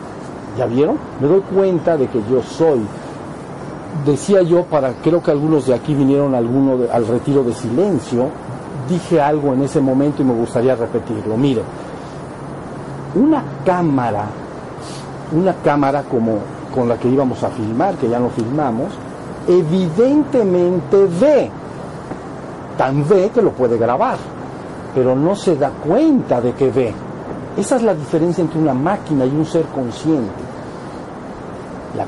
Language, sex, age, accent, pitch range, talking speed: Spanish, male, 50-69, Mexican, 135-180 Hz, 145 wpm